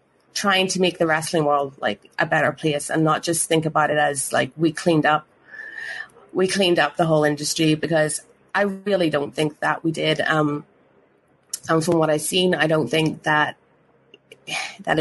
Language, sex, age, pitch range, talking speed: English, female, 30-49, 150-175 Hz, 185 wpm